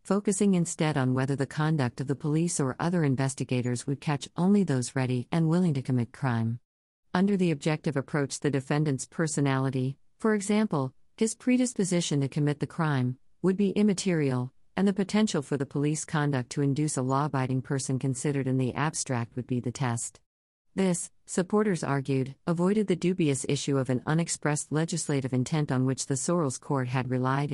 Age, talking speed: 50-69, 170 wpm